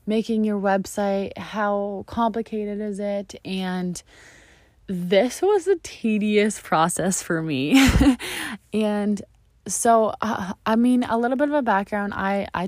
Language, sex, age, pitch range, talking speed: English, female, 20-39, 175-225 Hz, 125 wpm